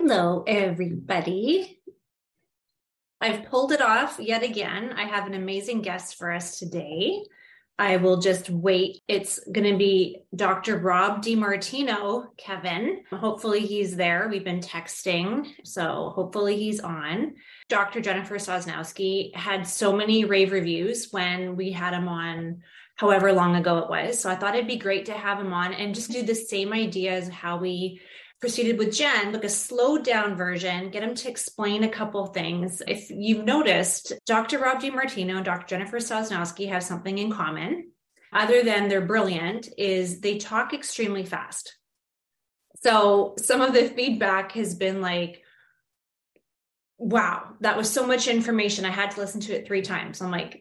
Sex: female